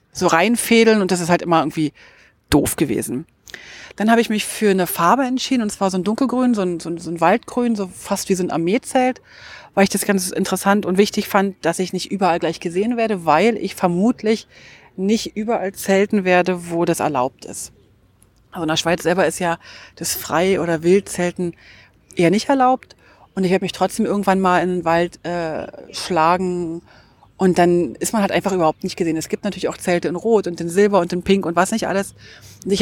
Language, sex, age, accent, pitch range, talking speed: German, female, 30-49, German, 170-215 Hz, 210 wpm